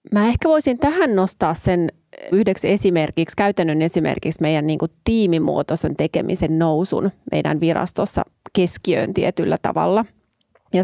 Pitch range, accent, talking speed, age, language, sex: 165-190 Hz, native, 110 wpm, 30-49, Finnish, female